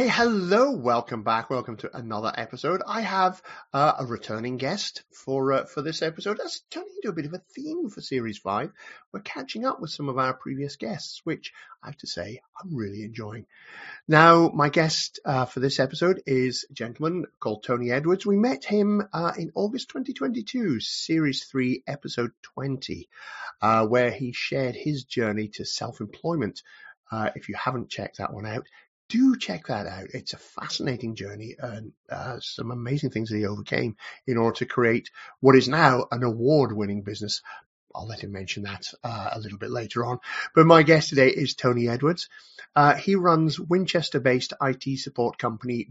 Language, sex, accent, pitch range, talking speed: English, male, British, 120-160 Hz, 185 wpm